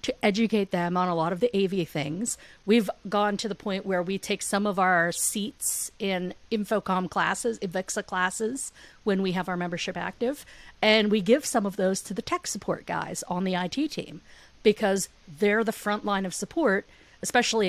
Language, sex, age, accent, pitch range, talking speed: English, female, 40-59, American, 175-215 Hz, 190 wpm